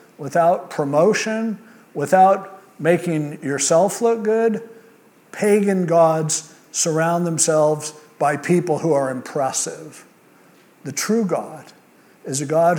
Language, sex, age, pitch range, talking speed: English, male, 50-69, 150-195 Hz, 105 wpm